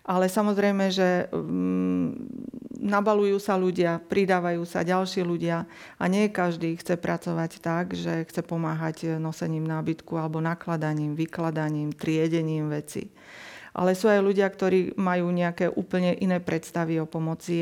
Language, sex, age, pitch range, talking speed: Slovak, female, 40-59, 165-185 Hz, 130 wpm